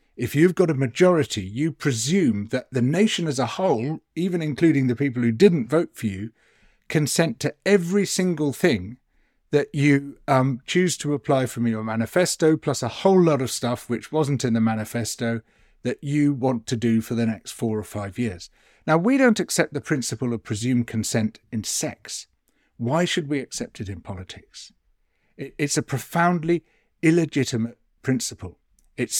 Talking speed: 170 wpm